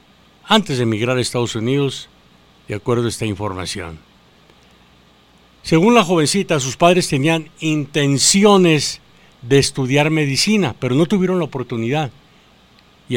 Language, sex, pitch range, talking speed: English, male, 120-160 Hz, 125 wpm